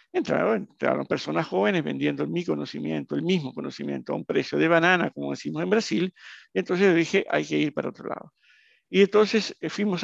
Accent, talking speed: Argentinian, 180 wpm